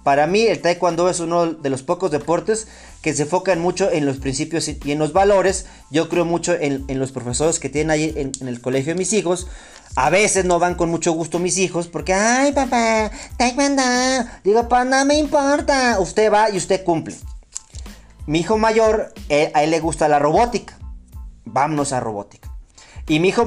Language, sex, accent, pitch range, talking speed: Spanish, male, Mexican, 145-195 Hz, 195 wpm